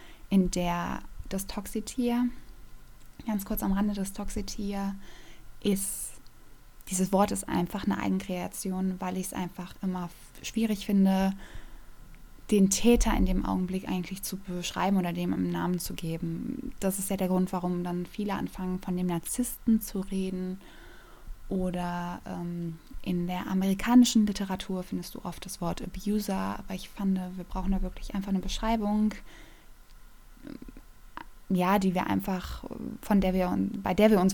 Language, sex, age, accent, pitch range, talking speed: German, female, 20-39, German, 175-200 Hz, 150 wpm